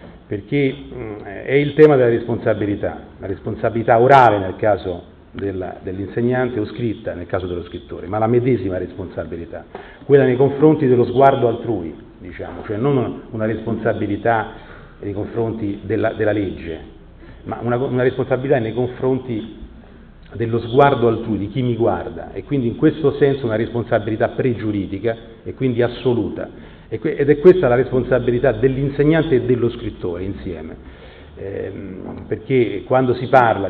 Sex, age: male, 40-59